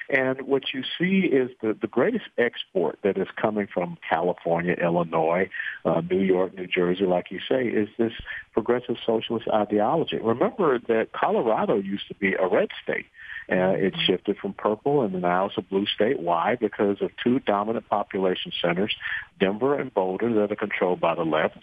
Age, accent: 50-69, American